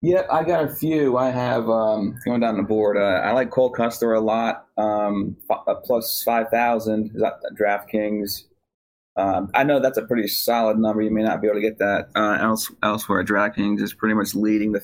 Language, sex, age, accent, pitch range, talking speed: English, male, 30-49, American, 105-120 Hz, 205 wpm